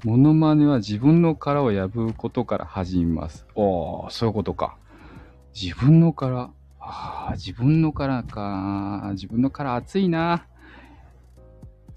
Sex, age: male, 20-39